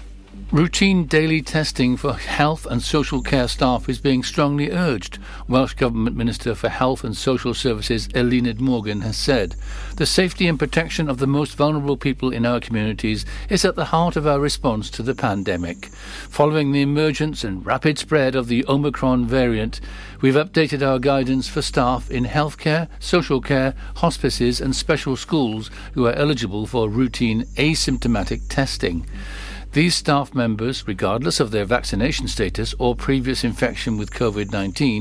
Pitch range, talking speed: 115-145 Hz, 160 wpm